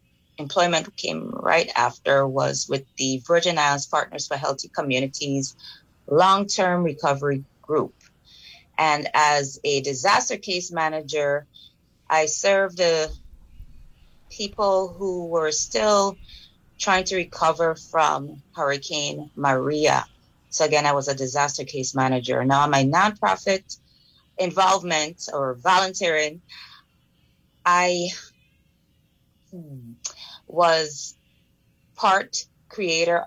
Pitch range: 140-180 Hz